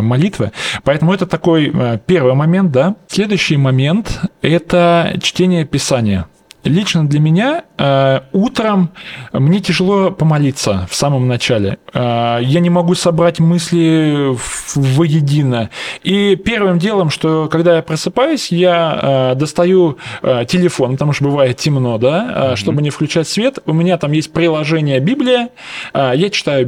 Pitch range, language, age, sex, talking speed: 135-180 Hz, Russian, 20-39, male, 125 wpm